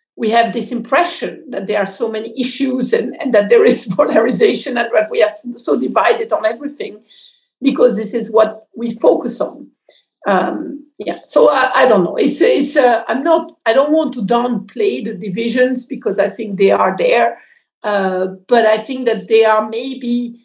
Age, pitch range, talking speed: 50-69, 205-275 Hz, 190 wpm